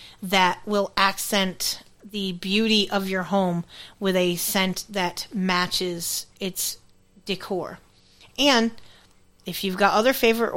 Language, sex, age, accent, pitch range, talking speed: English, female, 30-49, American, 190-245 Hz, 120 wpm